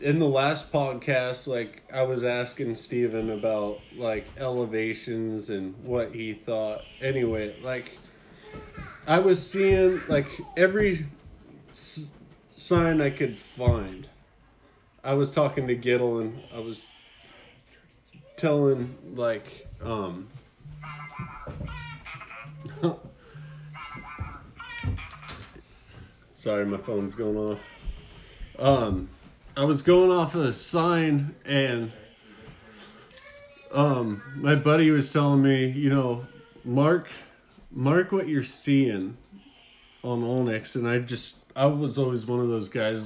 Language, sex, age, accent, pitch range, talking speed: English, male, 30-49, American, 115-150 Hz, 105 wpm